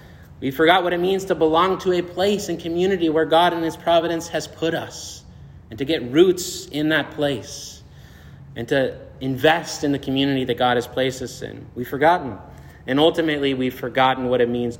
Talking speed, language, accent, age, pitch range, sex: 195 wpm, English, American, 30-49, 125-170 Hz, male